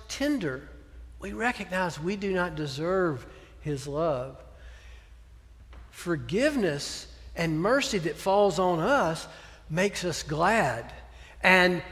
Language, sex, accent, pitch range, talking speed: English, male, American, 155-215 Hz, 100 wpm